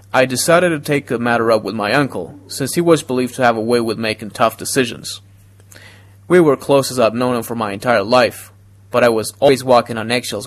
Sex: male